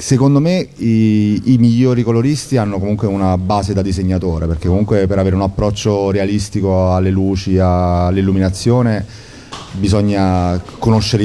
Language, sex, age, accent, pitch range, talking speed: Italian, male, 30-49, native, 95-110 Hz, 135 wpm